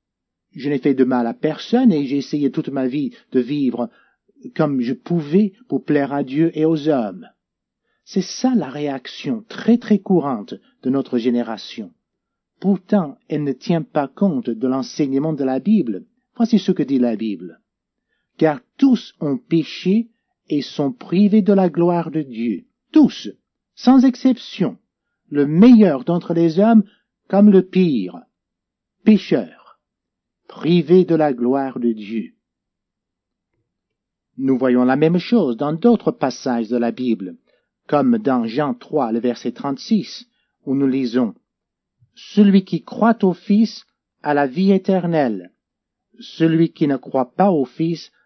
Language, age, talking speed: French, 50-69, 150 wpm